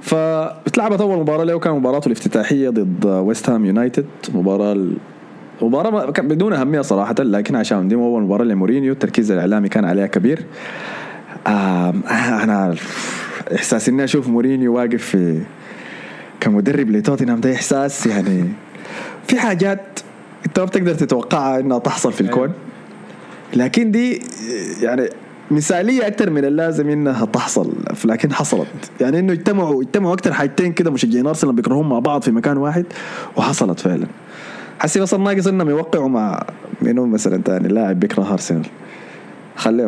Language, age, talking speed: Arabic, 20-39, 135 wpm